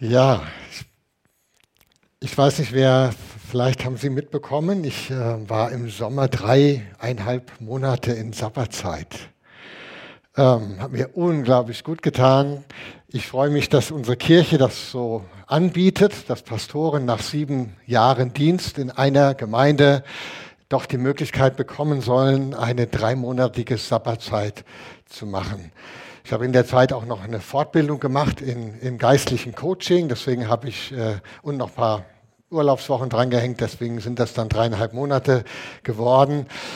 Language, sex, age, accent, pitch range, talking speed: German, male, 60-79, German, 115-140 Hz, 135 wpm